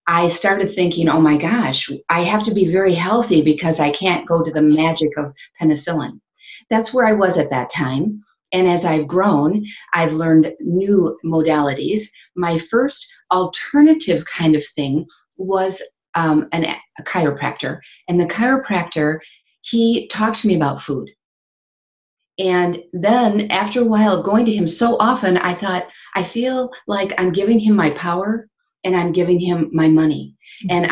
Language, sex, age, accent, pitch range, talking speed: English, female, 40-59, American, 160-215 Hz, 160 wpm